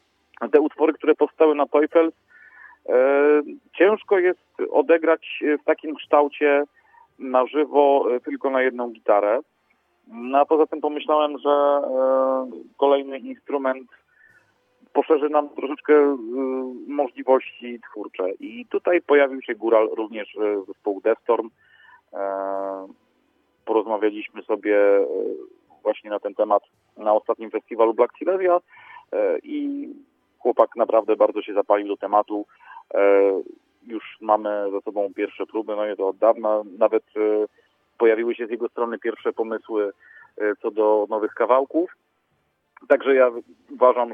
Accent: native